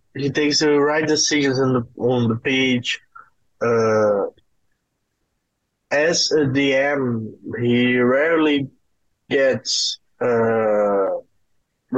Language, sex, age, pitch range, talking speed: English, male, 20-39, 125-155 Hz, 85 wpm